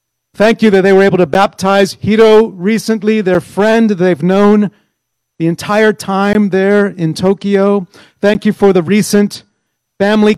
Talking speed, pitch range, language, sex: 150 wpm, 175-215 Hz, English, male